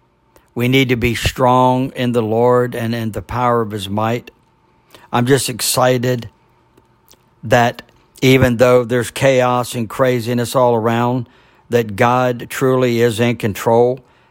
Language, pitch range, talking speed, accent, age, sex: English, 115-145 Hz, 140 wpm, American, 60-79, male